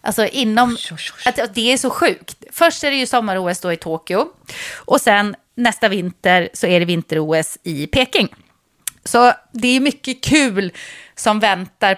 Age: 30-49